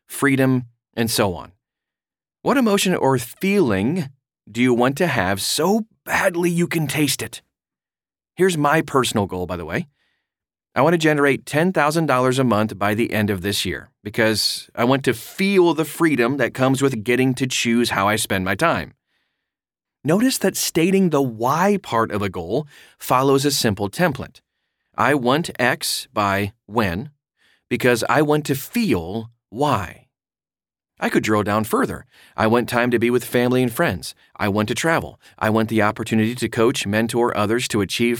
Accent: American